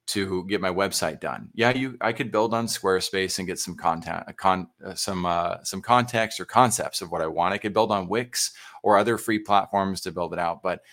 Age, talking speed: 30-49, 230 wpm